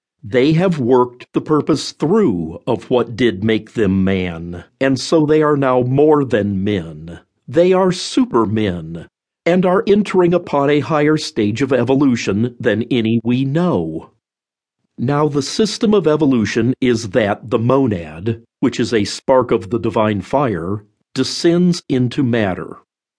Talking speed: 145 wpm